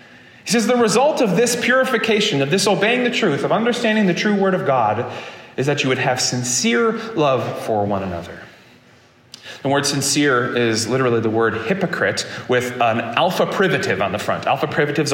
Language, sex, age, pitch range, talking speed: English, male, 30-49, 130-185 Hz, 180 wpm